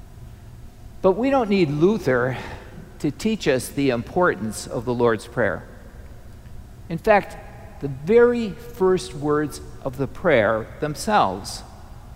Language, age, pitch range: English, 60-79, 120-185 Hz